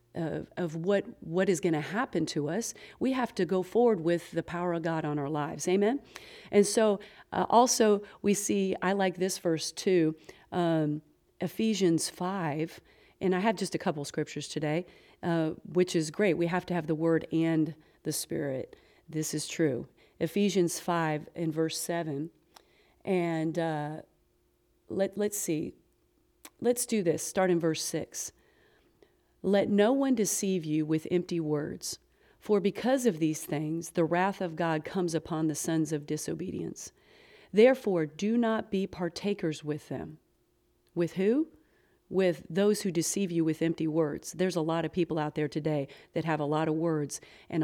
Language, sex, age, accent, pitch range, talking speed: English, female, 40-59, American, 160-195 Hz, 170 wpm